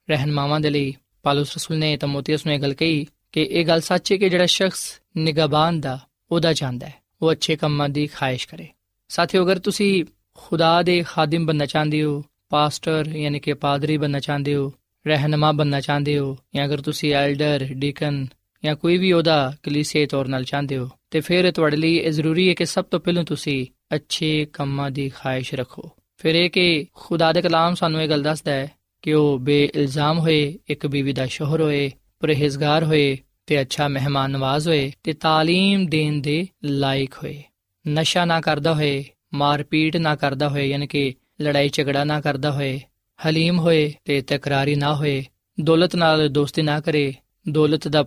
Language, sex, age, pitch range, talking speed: Punjabi, male, 20-39, 140-160 Hz, 175 wpm